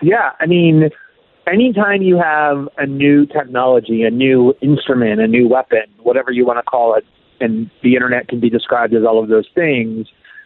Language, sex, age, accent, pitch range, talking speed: English, male, 30-49, American, 120-150 Hz, 185 wpm